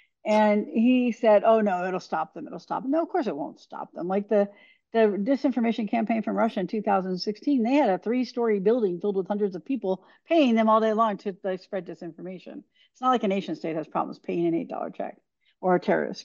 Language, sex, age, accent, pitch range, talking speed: English, female, 50-69, American, 180-230 Hz, 220 wpm